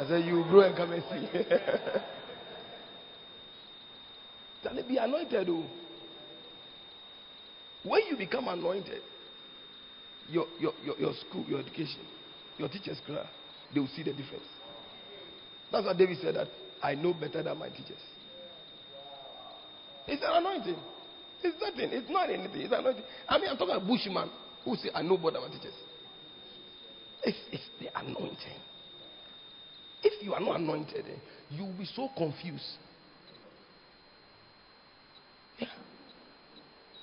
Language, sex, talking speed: English, male, 135 wpm